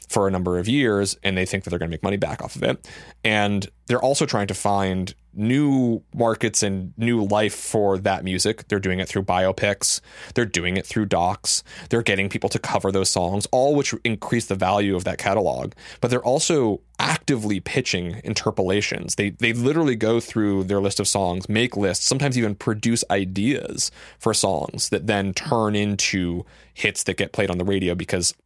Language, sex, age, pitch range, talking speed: English, male, 20-39, 95-110 Hz, 195 wpm